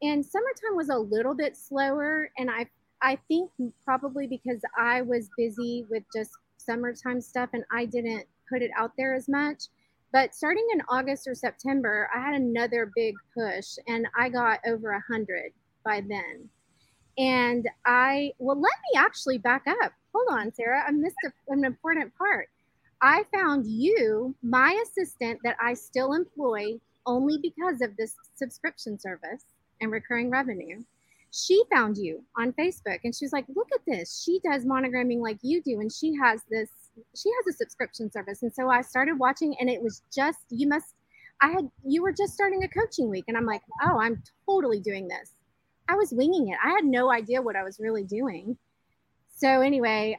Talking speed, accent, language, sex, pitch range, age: 180 wpm, American, English, female, 230-295 Hz, 30-49